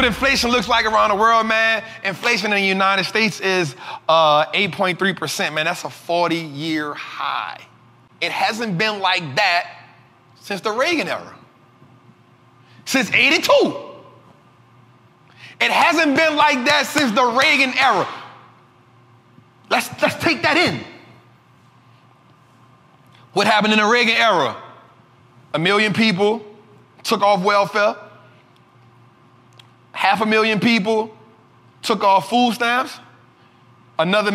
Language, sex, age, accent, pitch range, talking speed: English, male, 30-49, American, 130-210 Hz, 115 wpm